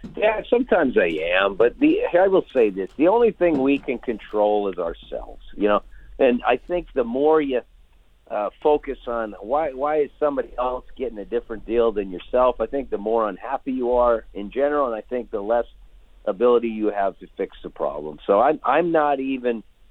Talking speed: 200 wpm